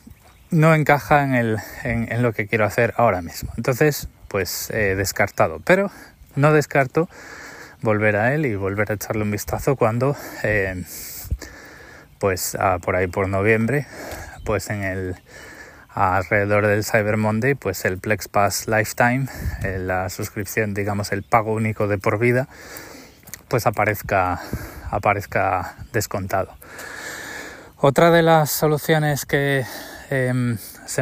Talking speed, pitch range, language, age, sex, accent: 130 wpm, 100-130 Hz, Spanish, 20-39, male, Spanish